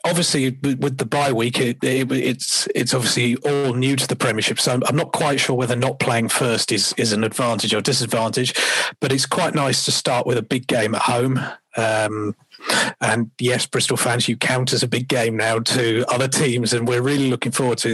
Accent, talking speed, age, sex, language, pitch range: British, 215 wpm, 40-59, male, English, 115-135 Hz